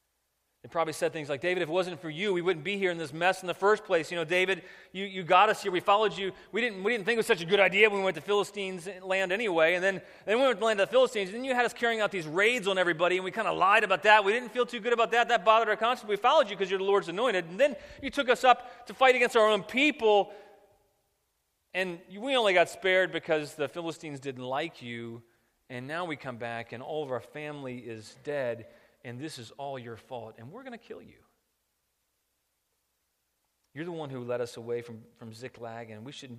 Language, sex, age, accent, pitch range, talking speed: English, male, 30-49, American, 140-200 Hz, 260 wpm